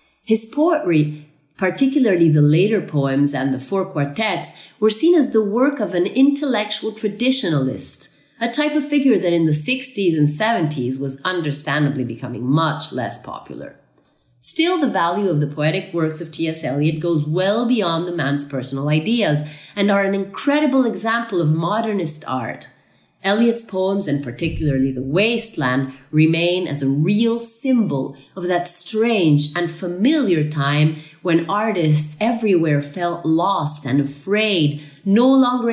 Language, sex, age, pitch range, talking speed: Italian, female, 30-49, 150-220 Hz, 145 wpm